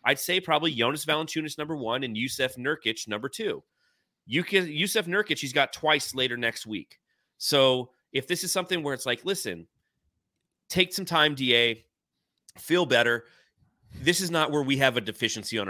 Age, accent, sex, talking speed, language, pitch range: 30-49, American, male, 175 wpm, English, 110-150 Hz